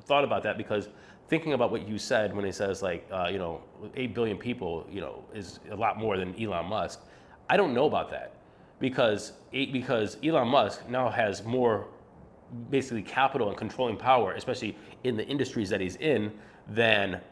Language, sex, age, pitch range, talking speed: English, male, 30-49, 105-130 Hz, 185 wpm